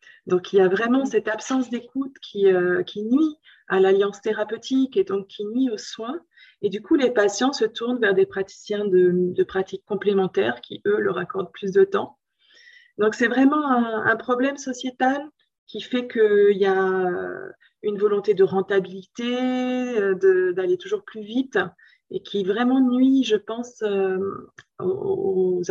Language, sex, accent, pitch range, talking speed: French, female, French, 195-265 Hz, 160 wpm